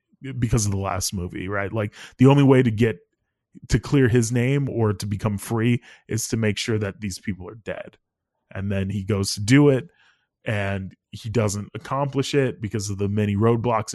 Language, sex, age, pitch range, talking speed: English, male, 20-39, 100-125 Hz, 200 wpm